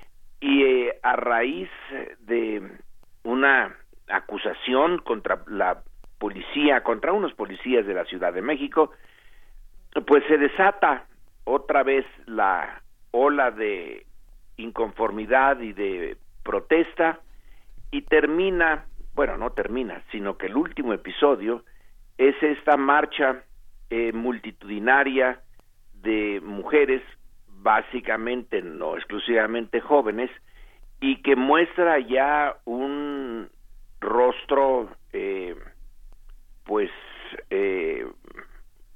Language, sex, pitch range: Spanish, male, 115-165 Hz